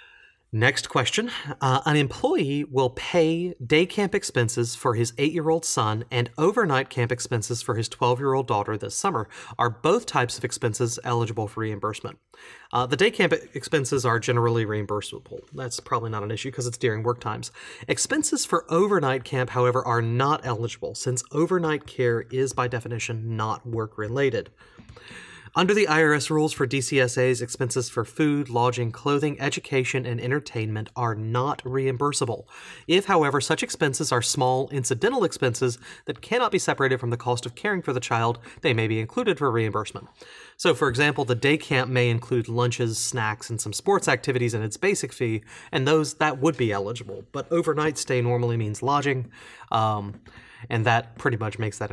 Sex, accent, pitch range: male, American, 115-145 Hz